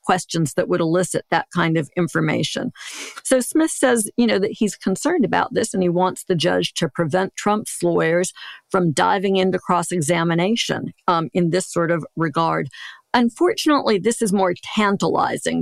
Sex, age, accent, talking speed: female, 50-69, American, 160 wpm